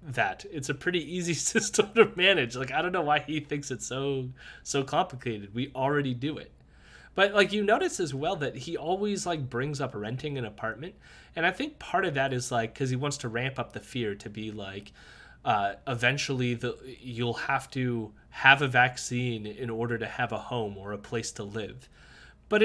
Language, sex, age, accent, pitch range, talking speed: English, male, 20-39, American, 120-175 Hz, 205 wpm